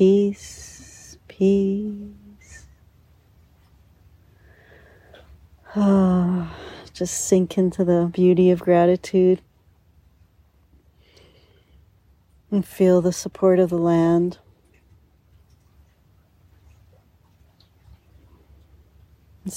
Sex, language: female, English